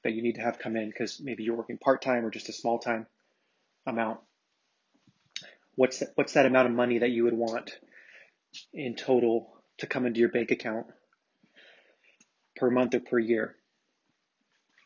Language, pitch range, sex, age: English, 115-125 Hz, male, 30-49